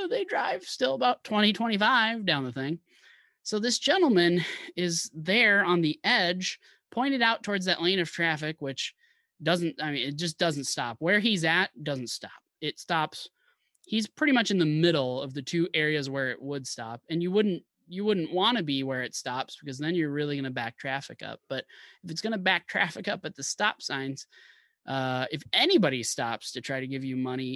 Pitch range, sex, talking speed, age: 130-185 Hz, male, 205 wpm, 20-39